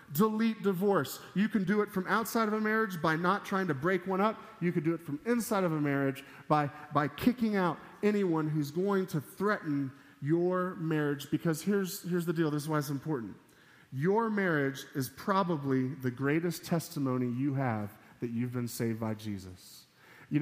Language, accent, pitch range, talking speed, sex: English, American, 130-190 Hz, 190 wpm, male